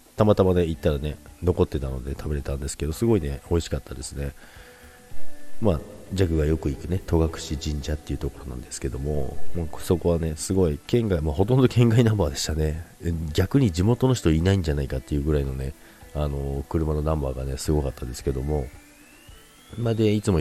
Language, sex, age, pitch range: Japanese, male, 40-59, 70-95 Hz